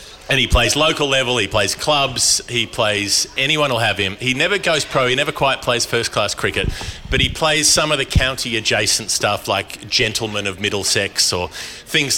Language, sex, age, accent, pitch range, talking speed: English, male, 30-49, Australian, 105-130 Hz, 185 wpm